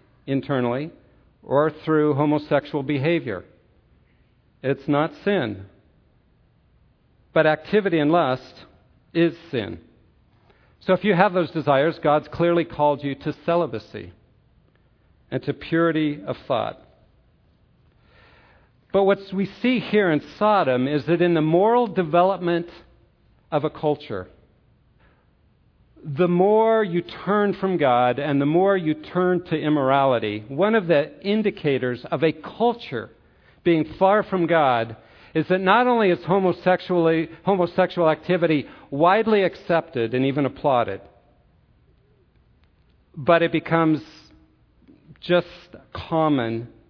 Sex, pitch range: male, 135-175 Hz